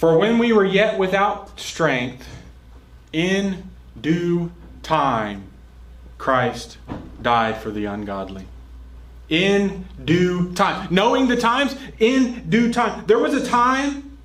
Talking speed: 120 wpm